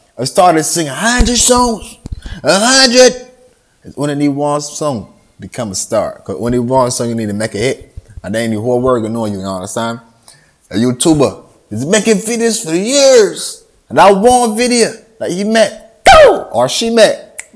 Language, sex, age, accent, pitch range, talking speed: English, male, 20-39, American, 125-165 Hz, 190 wpm